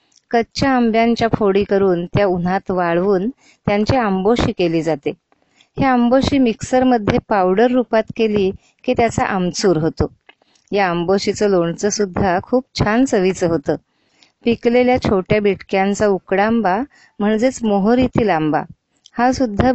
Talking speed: 65 wpm